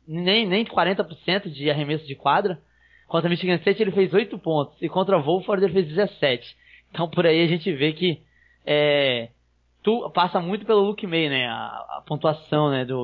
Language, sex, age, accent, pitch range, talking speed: Portuguese, male, 20-39, Brazilian, 155-205 Hz, 185 wpm